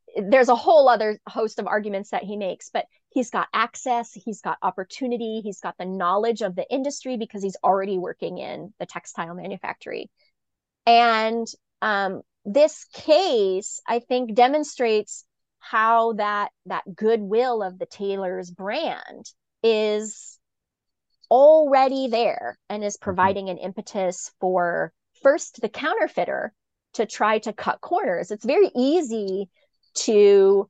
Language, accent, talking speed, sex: English, American, 135 wpm, female